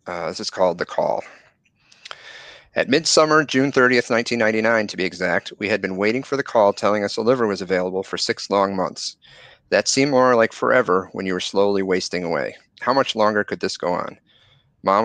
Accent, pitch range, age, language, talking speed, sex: American, 100-125 Hz, 40-59, English, 200 wpm, male